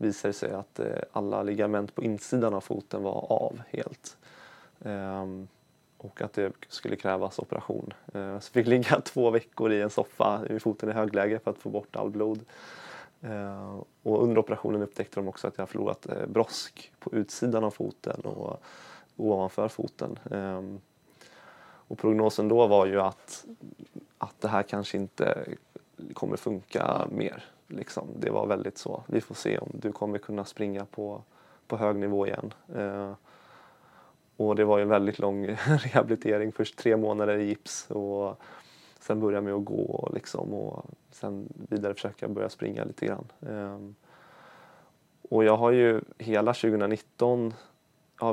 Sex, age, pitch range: male, 20-39, 100-110 Hz